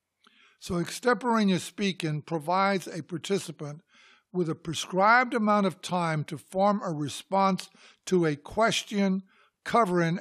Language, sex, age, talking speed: English, male, 60-79, 120 wpm